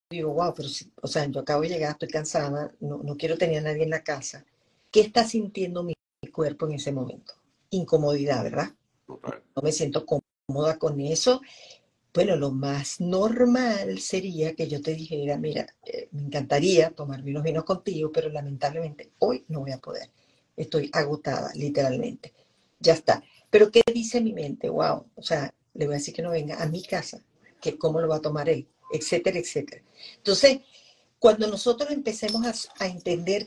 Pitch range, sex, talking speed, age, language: 150-195 Hz, female, 180 wpm, 50-69, Spanish